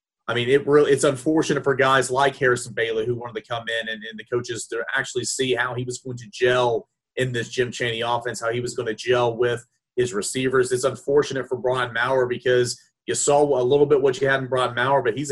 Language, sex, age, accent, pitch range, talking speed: English, male, 30-49, American, 120-140 Hz, 245 wpm